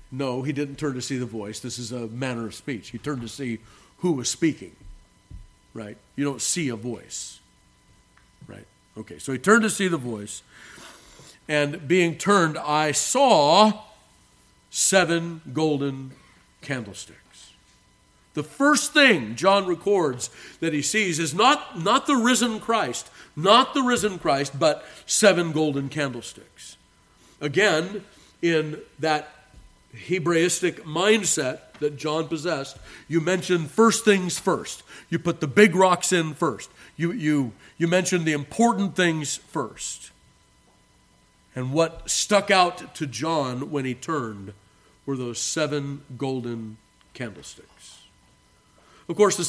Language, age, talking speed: English, 50-69, 135 wpm